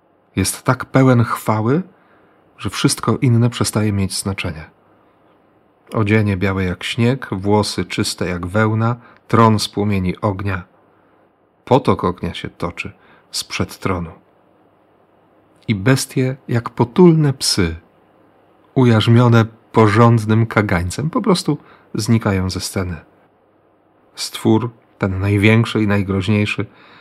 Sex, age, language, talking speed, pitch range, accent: male, 40-59, Polish, 100 wpm, 100-120 Hz, native